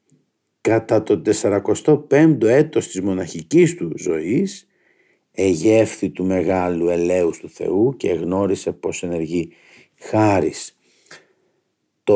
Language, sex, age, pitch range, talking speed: Greek, male, 50-69, 95-155 Hz, 100 wpm